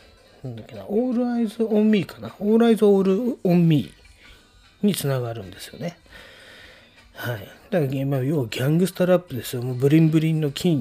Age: 30-49